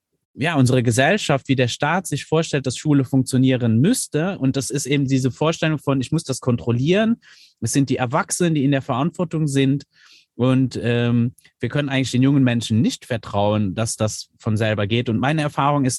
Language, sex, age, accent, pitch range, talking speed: German, male, 30-49, German, 115-145 Hz, 190 wpm